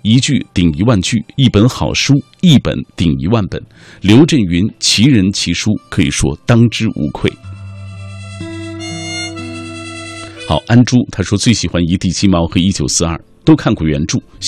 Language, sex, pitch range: Chinese, male, 85-120 Hz